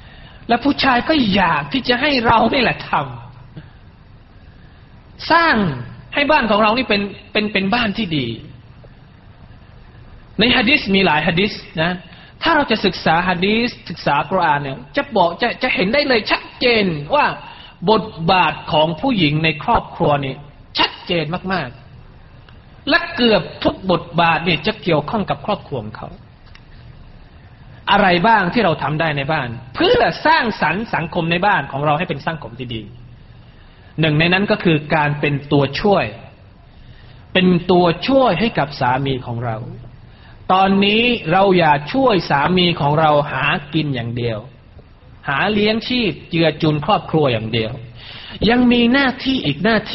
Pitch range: 130-210 Hz